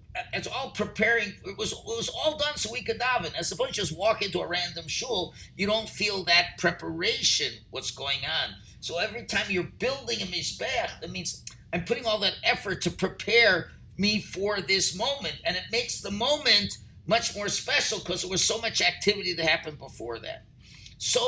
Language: English